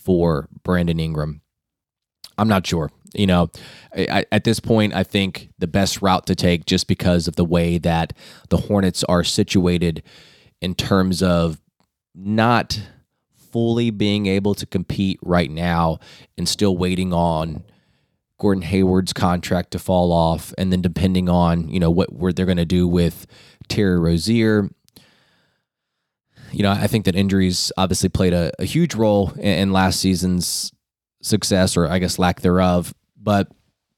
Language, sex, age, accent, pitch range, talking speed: English, male, 20-39, American, 85-100 Hz, 155 wpm